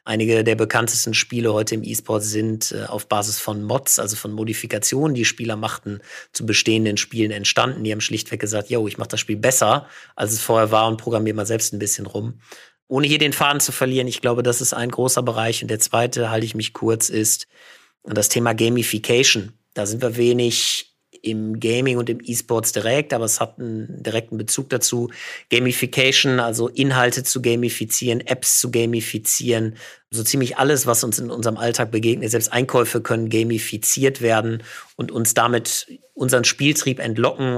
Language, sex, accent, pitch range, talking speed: German, male, German, 110-120 Hz, 180 wpm